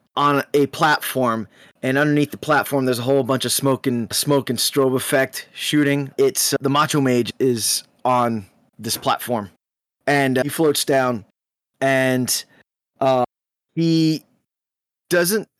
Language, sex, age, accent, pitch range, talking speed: English, male, 20-39, American, 130-155 Hz, 140 wpm